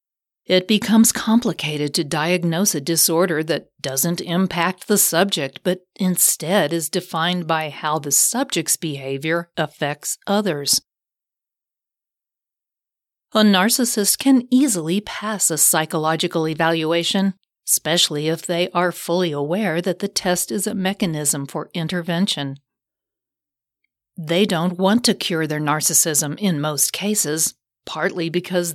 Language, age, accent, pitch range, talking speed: English, 50-69, American, 160-200 Hz, 120 wpm